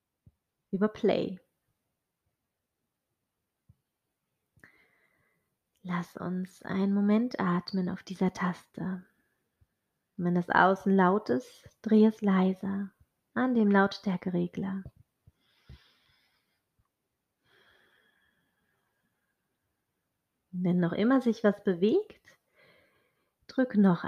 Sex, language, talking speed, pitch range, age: female, German, 70 wpm, 185-220 Hz, 30-49